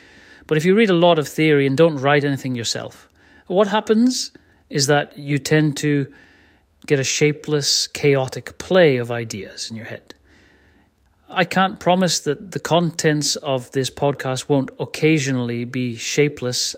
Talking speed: 155 wpm